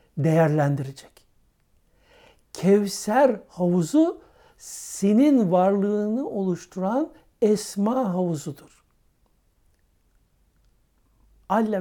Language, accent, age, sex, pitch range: Turkish, native, 60-79, male, 160-215 Hz